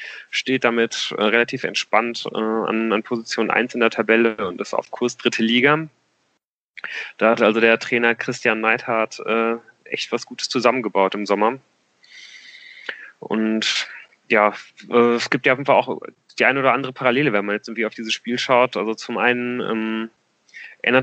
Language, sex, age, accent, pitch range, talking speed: German, male, 20-39, German, 110-130 Hz, 170 wpm